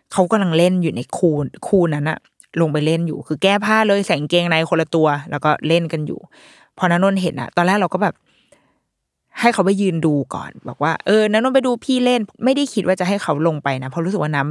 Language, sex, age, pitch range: Thai, female, 20-39, 155-210 Hz